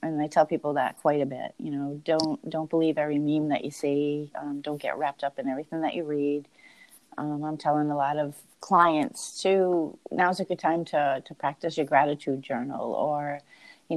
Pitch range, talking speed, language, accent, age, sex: 145-165 Hz, 205 wpm, English, American, 30-49, female